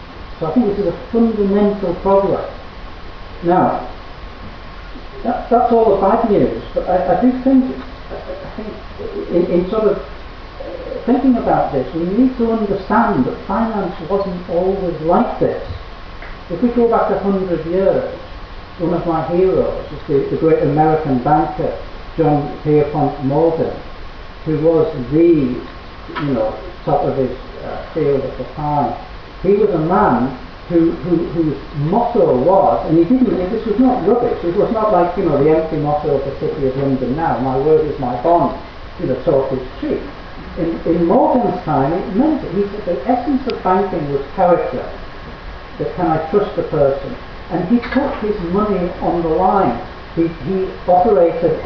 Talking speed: 170 wpm